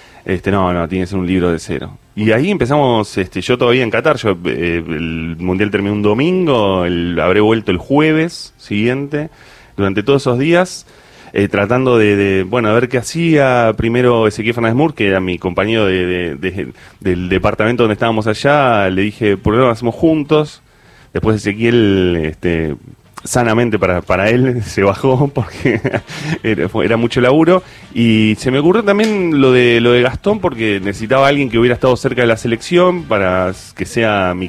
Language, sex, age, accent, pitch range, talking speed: Spanish, male, 30-49, Argentinian, 95-125 Hz, 190 wpm